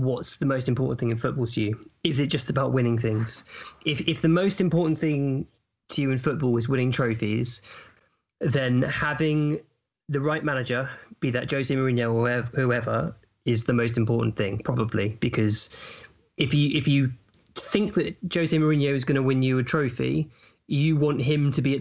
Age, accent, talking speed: 20-39, British, 185 wpm